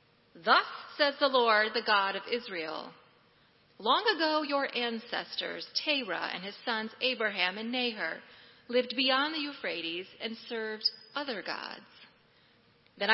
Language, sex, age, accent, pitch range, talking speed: English, female, 30-49, American, 190-255 Hz, 130 wpm